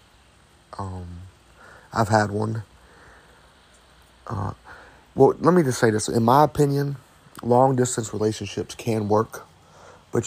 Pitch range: 100-115 Hz